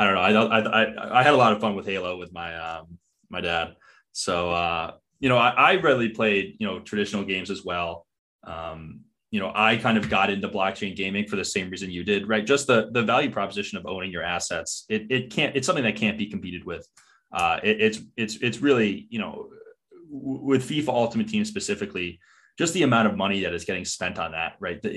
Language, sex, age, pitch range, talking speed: English, male, 20-39, 90-120 Hz, 225 wpm